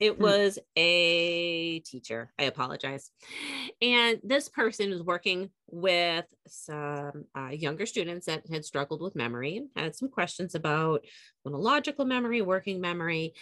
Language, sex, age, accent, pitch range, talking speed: English, female, 30-49, American, 150-205 Hz, 130 wpm